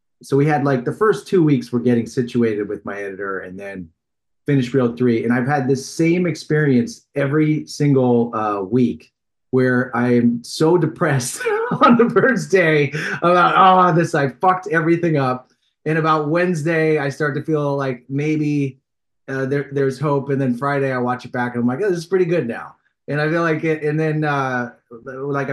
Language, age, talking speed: English, 30-49, 195 wpm